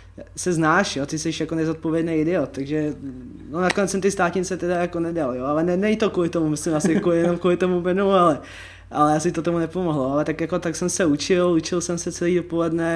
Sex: male